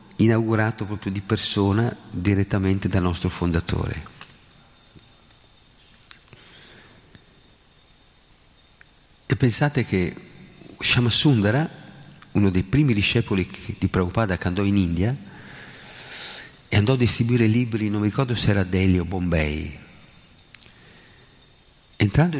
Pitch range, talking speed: 90-115 Hz, 95 wpm